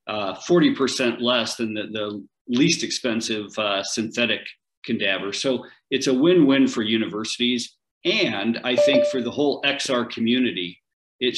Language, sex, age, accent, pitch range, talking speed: English, male, 50-69, American, 110-125 Hz, 135 wpm